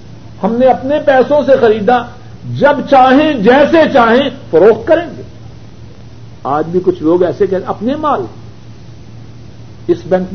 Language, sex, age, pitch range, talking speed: Urdu, male, 60-79, 120-195 Hz, 135 wpm